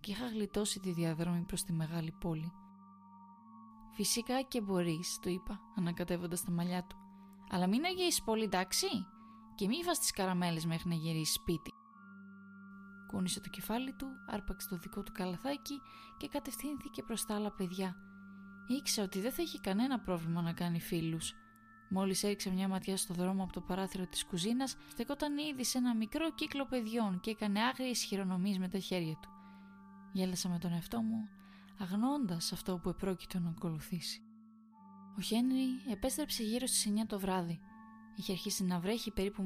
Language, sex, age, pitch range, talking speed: Greek, female, 20-39, 185-225 Hz, 165 wpm